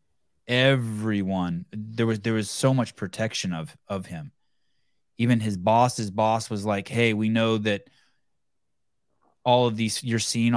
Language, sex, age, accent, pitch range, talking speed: English, male, 20-39, American, 100-130 Hz, 150 wpm